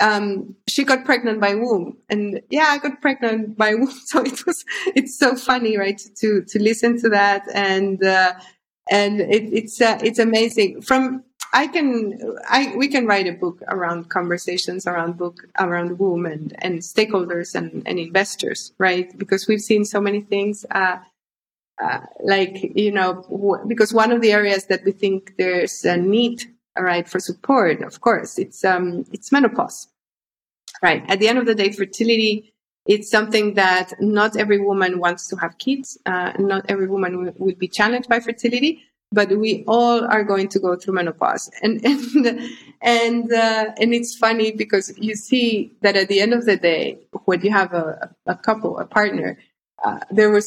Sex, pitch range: female, 185-235 Hz